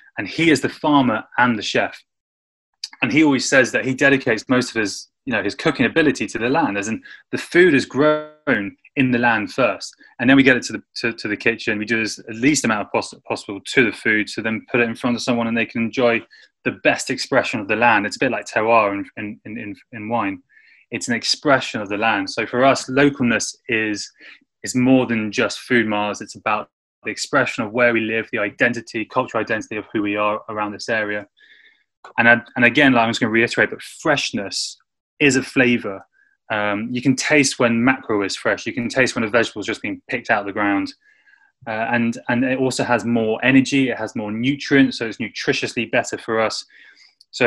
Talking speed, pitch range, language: 220 wpm, 110-135 Hz, English